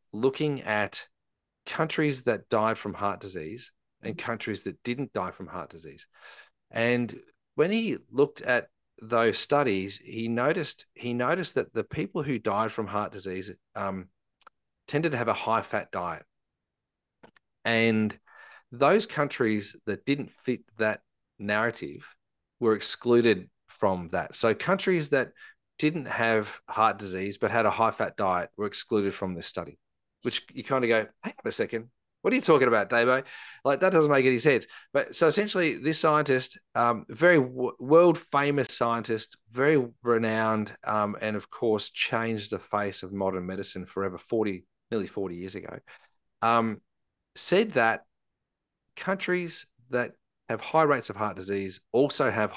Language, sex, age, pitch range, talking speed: English, male, 40-59, 100-135 Hz, 155 wpm